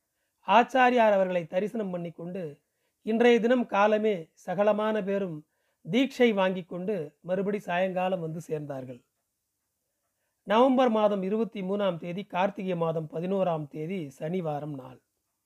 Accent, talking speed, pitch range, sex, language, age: native, 115 wpm, 170-225 Hz, male, Tamil, 40-59